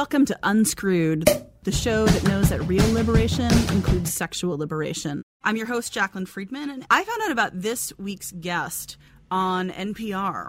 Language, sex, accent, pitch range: English, female, American, 170-225 Hz